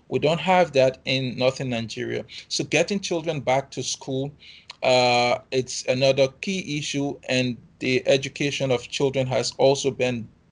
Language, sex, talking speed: English, male, 150 wpm